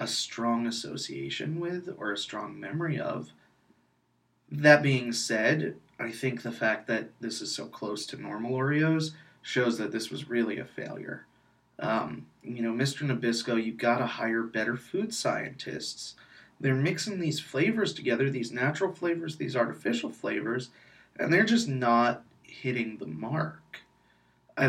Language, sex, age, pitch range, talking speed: English, male, 30-49, 115-145 Hz, 150 wpm